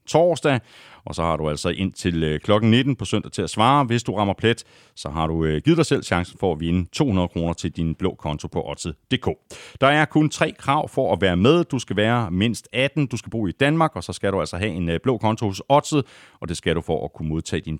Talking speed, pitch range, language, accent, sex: 255 wpm, 90-140 Hz, Danish, native, male